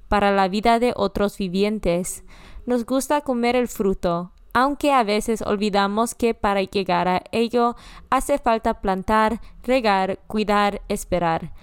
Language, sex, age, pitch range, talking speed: Spanish, female, 20-39, 200-255 Hz, 135 wpm